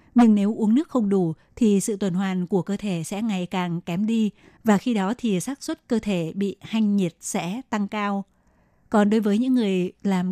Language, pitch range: Vietnamese, 185-230 Hz